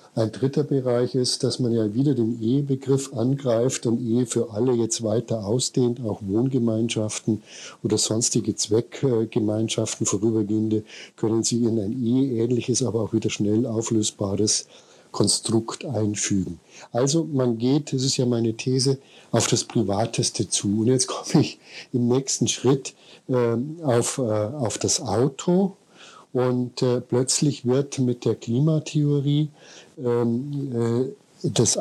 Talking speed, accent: 130 wpm, German